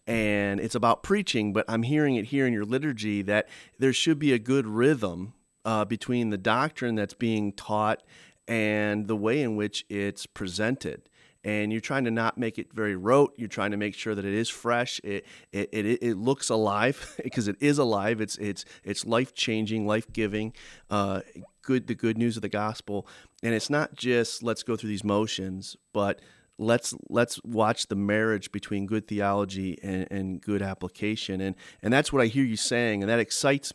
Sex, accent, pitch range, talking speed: male, American, 100-120 Hz, 195 wpm